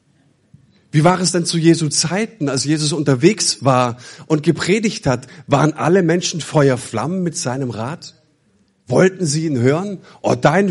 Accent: German